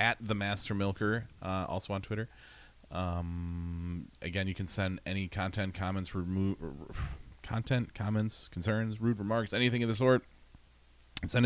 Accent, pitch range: American, 90-125 Hz